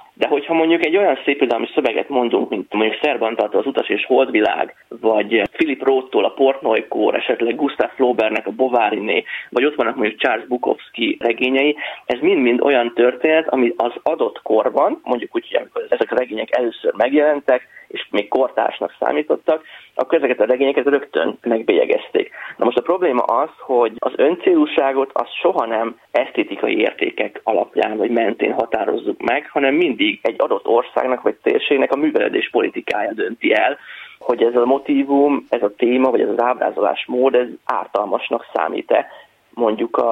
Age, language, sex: 30-49, Hungarian, male